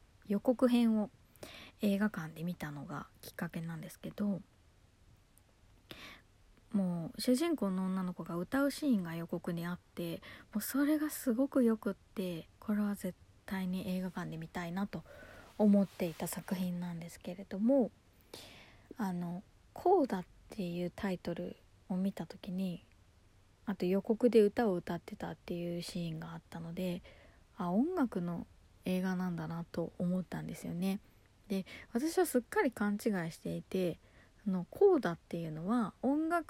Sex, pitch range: female, 175-235 Hz